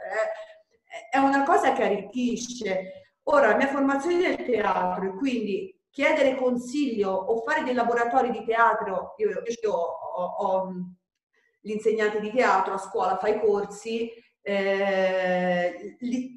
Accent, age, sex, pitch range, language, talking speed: native, 30-49, female, 200-255 Hz, Italian, 125 wpm